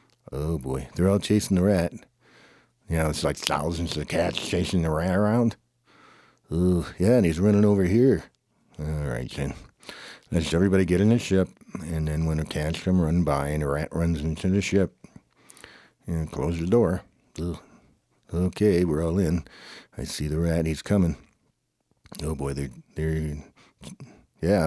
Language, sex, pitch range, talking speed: English, male, 75-95 Hz, 170 wpm